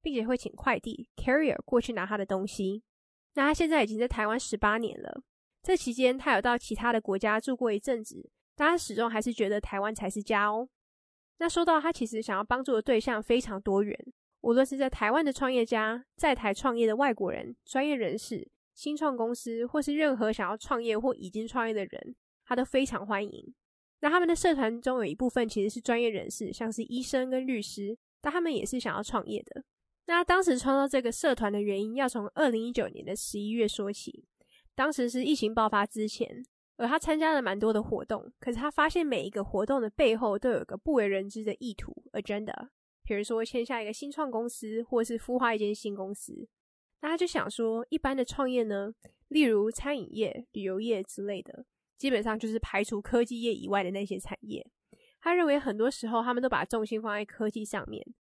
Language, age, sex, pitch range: English, 20-39, female, 215-265 Hz